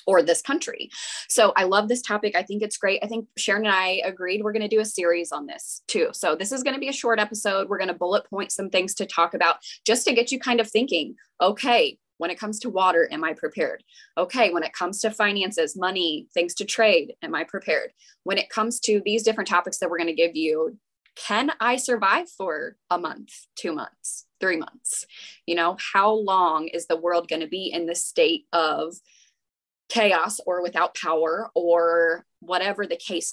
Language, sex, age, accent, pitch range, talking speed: English, female, 10-29, American, 175-235 Hz, 215 wpm